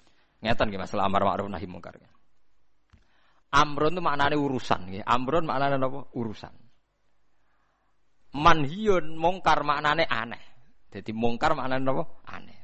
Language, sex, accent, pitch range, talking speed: Indonesian, male, native, 115-155 Hz, 110 wpm